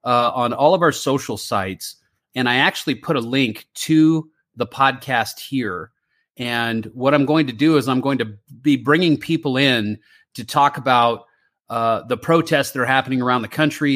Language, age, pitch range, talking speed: English, 30-49, 115-140 Hz, 185 wpm